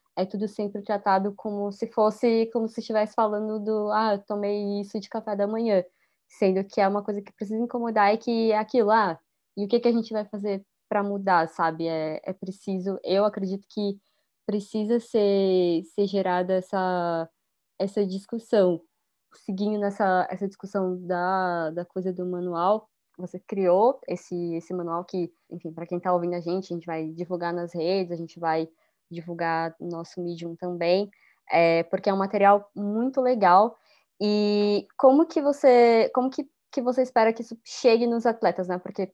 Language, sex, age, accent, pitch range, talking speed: Portuguese, female, 20-39, Brazilian, 185-220 Hz, 180 wpm